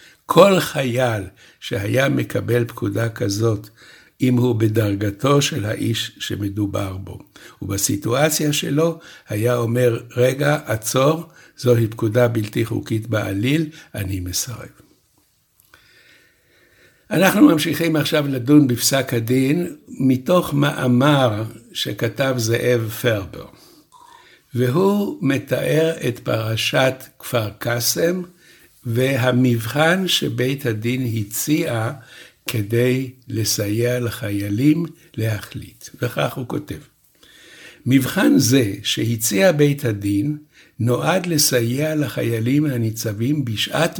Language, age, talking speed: Hebrew, 60-79, 85 wpm